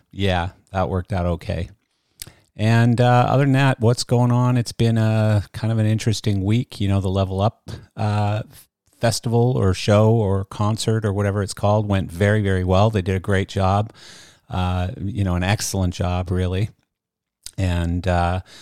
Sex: male